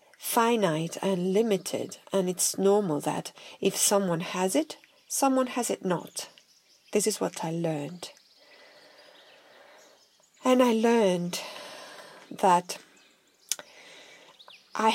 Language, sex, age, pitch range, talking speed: English, female, 40-59, 180-225 Hz, 100 wpm